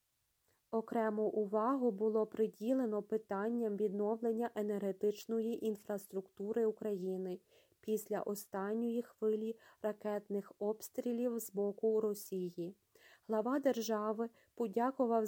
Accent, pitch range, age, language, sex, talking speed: native, 210-235 Hz, 30-49, Ukrainian, female, 80 wpm